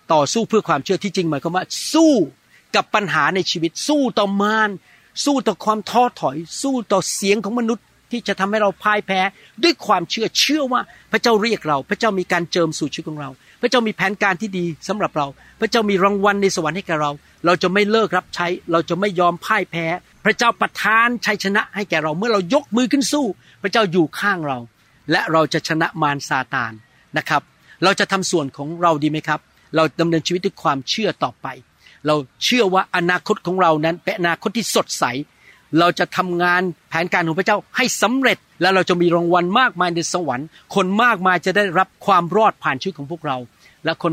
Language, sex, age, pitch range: Thai, male, 60-79, 165-210 Hz